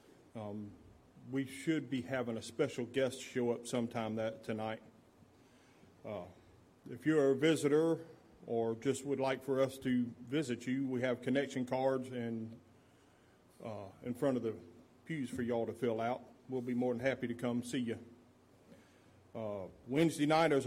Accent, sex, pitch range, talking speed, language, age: American, male, 115-135 Hz, 165 wpm, English, 40-59